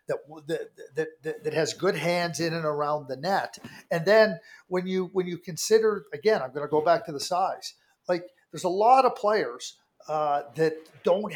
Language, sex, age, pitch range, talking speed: English, male, 50-69, 155-210 Hz, 195 wpm